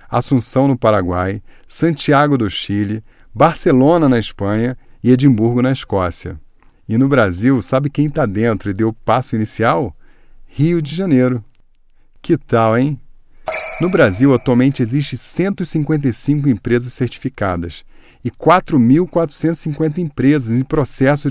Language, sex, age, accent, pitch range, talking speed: Portuguese, male, 40-59, Brazilian, 115-155 Hz, 120 wpm